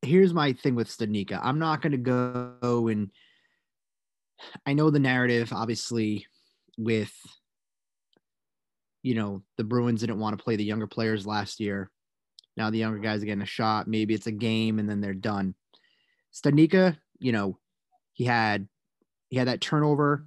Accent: American